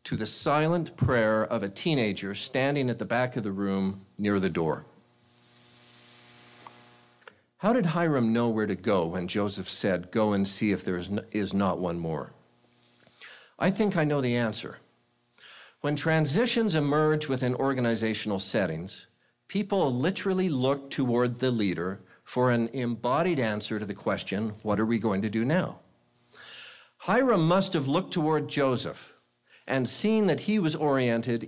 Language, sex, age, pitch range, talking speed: English, male, 50-69, 100-145 Hz, 155 wpm